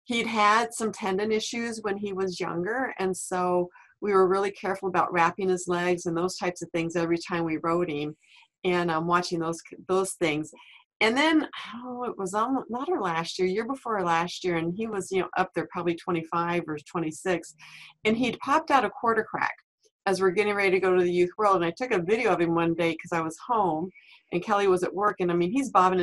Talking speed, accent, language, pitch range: 225 wpm, American, English, 175-220 Hz